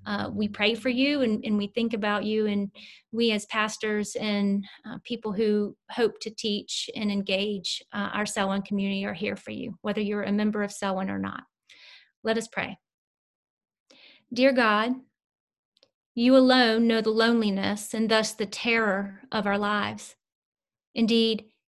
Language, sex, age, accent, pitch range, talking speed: English, female, 30-49, American, 210-240 Hz, 160 wpm